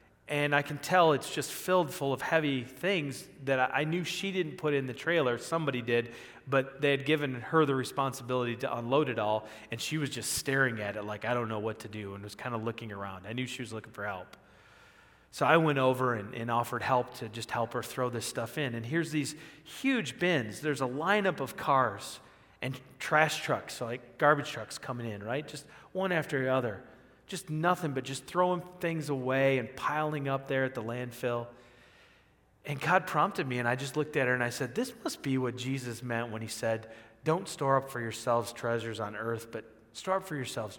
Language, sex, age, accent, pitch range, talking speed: English, male, 30-49, American, 115-155 Hz, 220 wpm